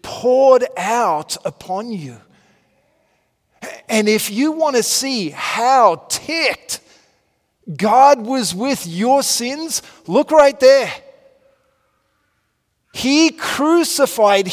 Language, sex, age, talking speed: English, male, 40-59, 90 wpm